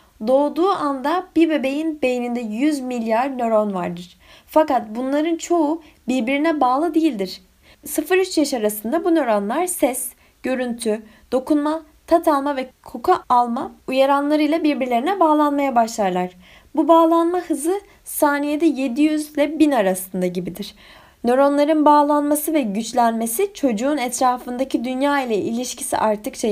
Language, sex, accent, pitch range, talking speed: Turkish, female, native, 245-310 Hz, 115 wpm